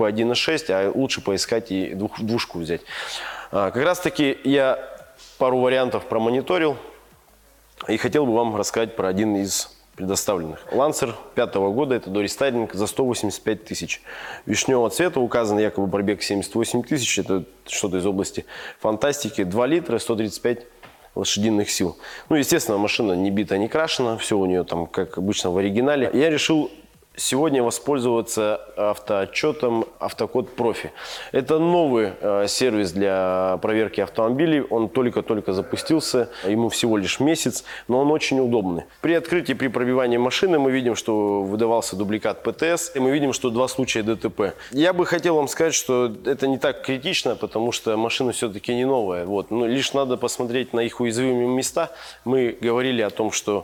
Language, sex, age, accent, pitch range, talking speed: Russian, male, 20-39, native, 105-130 Hz, 155 wpm